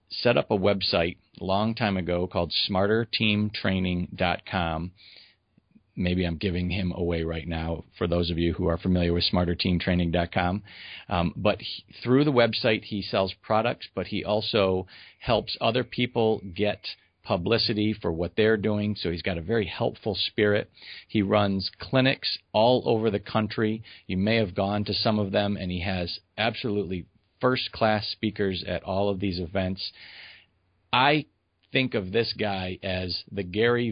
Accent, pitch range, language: American, 90-110 Hz, English